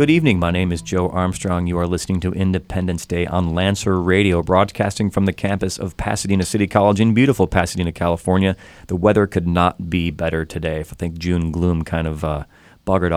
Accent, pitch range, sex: American, 85-100 Hz, male